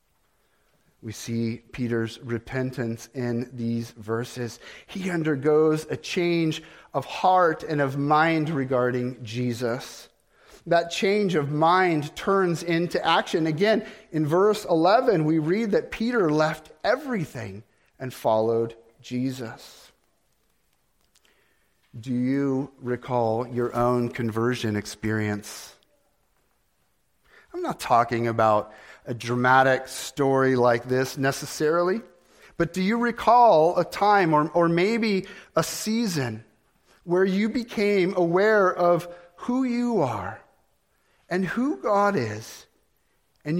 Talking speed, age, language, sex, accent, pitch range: 110 wpm, 40-59, English, male, American, 120-185 Hz